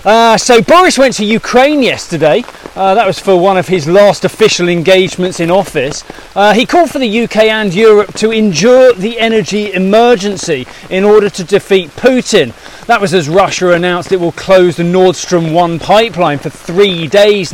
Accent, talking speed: British, 180 wpm